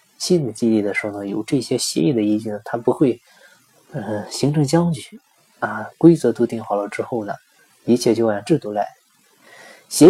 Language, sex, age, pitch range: Chinese, male, 20-39, 110-130 Hz